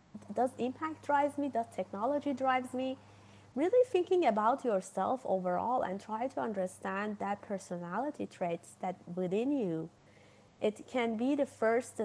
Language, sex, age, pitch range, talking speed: English, female, 30-49, 185-255 Hz, 140 wpm